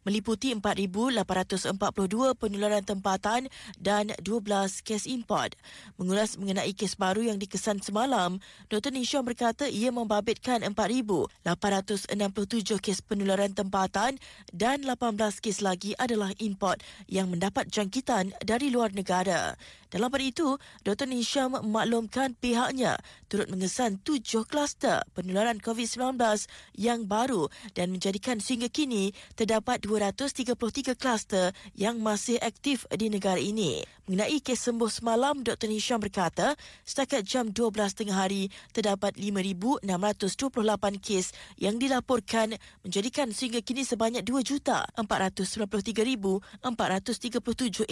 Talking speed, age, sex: 105 wpm, 20-39, female